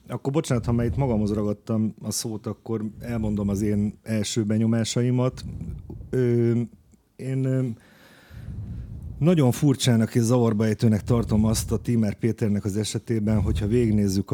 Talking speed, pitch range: 125 wpm, 95-115 Hz